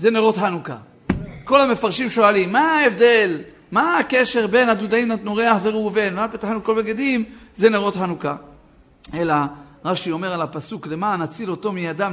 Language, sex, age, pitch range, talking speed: Hebrew, male, 50-69, 195-265 Hz, 160 wpm